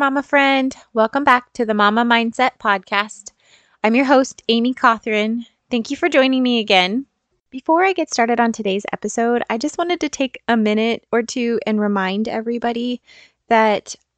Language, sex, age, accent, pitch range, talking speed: English, female, 20-39, American, 200-250 Hz, 170 wpm